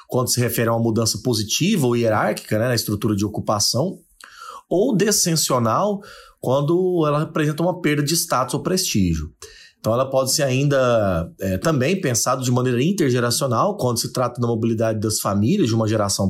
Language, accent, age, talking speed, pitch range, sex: Portuguese, Brazilian, 30-49, 165 wpm, 120-165 Hz, male